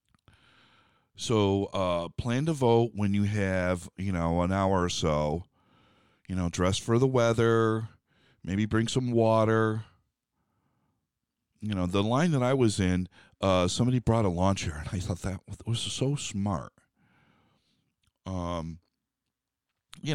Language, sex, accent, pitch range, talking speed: English, male, American, 90-110 Hz, 135 wpm